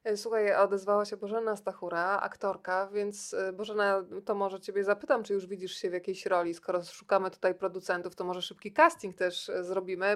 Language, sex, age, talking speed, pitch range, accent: Polish, female, 20-39, 170 wpm, 190-225 Hz, native